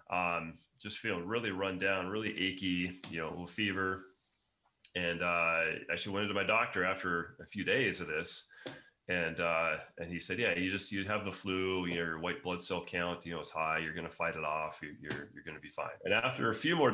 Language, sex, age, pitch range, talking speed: English, male, 30-49, 85-100 Hz, 215 wpm